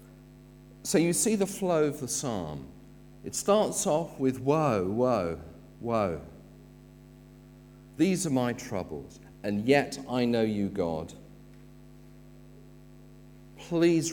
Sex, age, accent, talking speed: male, 50-69, British, 110 wpm